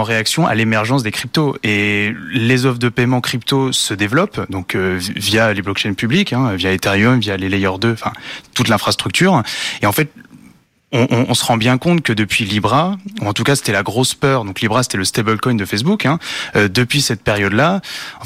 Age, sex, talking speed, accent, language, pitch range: 20-39, male, 210 wpm, French, French, 110-135 Hz